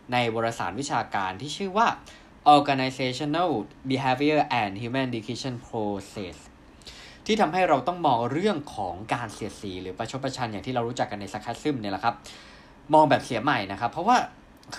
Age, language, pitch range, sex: 20-39, Thai, 110-150 Hz, male